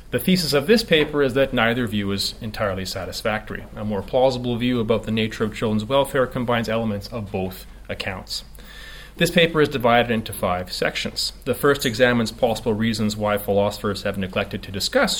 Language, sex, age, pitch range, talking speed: English, male, 30-49, 105-140 Hz, 180 wpm